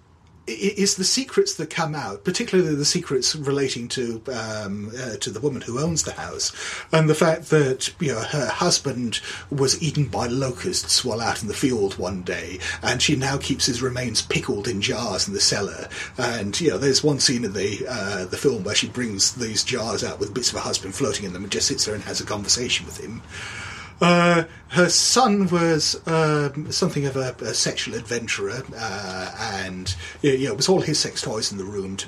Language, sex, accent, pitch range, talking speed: English, male, British, 100-155 Hz, 210 wpm